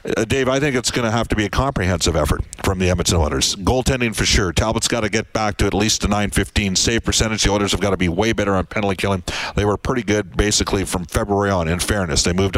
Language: English